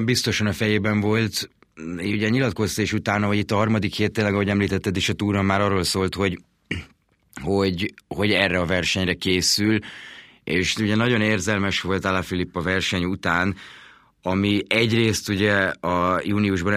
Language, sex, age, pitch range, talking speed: Hungarian, male, 30-49, 95-110 Hz, 150 wpm